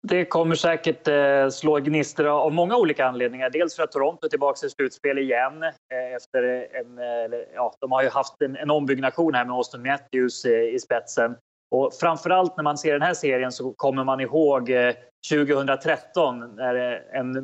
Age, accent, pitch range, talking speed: 20-39, Swedish, 125-155 Hz, 190 wpm